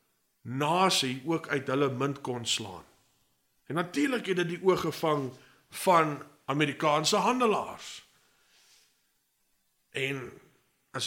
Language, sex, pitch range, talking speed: English, male, 130-160 Hz, 100 wpm